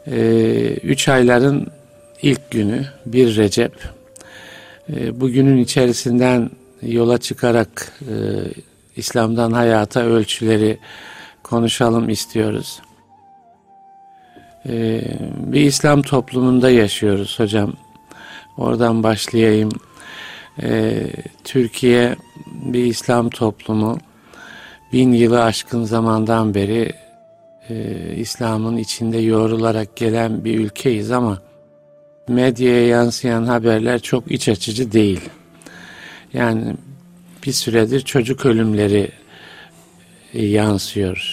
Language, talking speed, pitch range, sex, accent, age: Turkish, 80 wpm, 110-130 Hz, male, native, 50-69